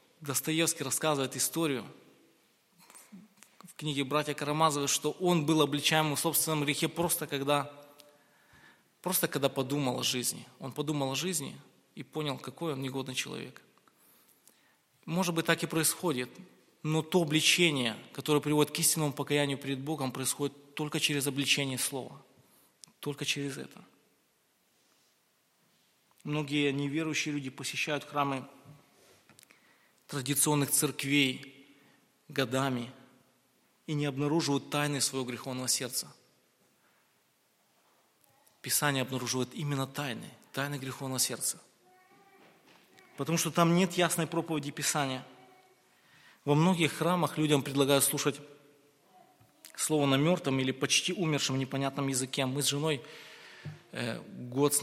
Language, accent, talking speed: Russian, native, 110 wpm